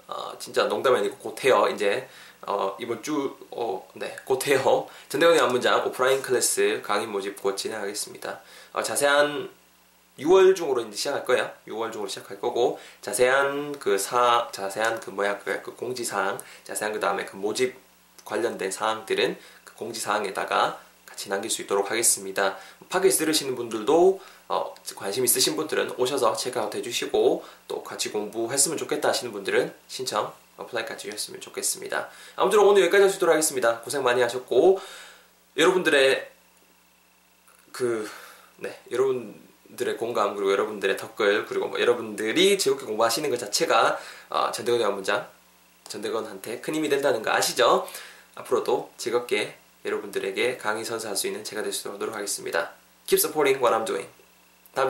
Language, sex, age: Korean, male, 20-39